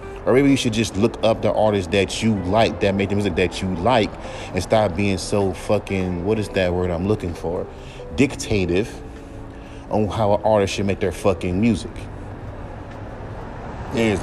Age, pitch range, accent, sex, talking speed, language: 30-49, 95-125 Hz, American, male, 175 wpm, English